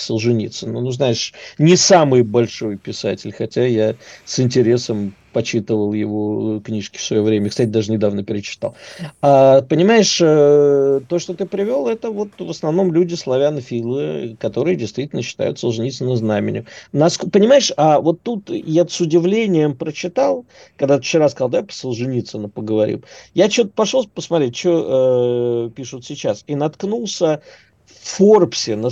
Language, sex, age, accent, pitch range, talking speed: Russian, male, 50-69, native, 115-170 Hz, 135 wpm